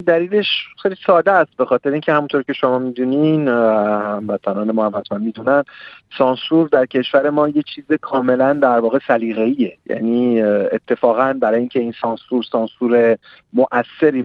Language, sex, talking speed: Persian, male, 145 wpm